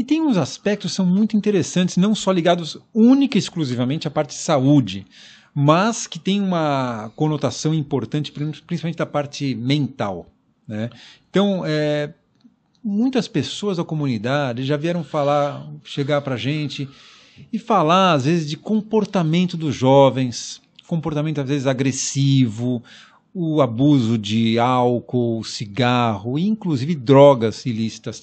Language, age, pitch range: Portuguese, 50-69, 130-185 Hz